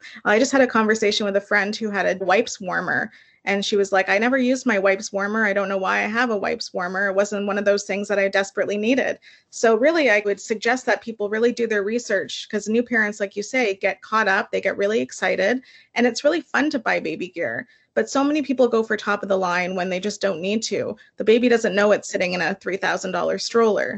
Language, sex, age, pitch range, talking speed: English, female, 30-49, 195-235 Hz, 250 wpm